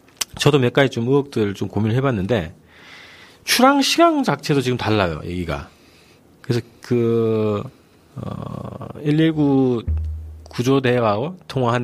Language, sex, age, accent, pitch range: Korean, male, 40-59, native, 100-150 Hz